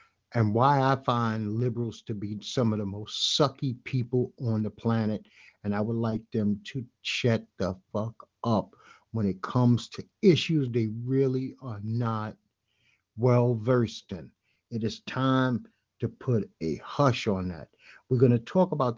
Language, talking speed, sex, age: English, 165 wpm, male, 60-79